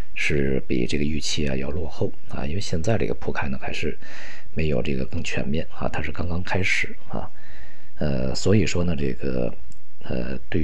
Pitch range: 70-90 Hz